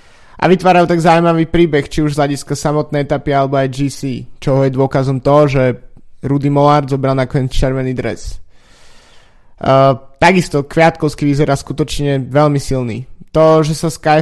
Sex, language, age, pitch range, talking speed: male, Slovak, 20-39, 130-155 Hz, 155 wpm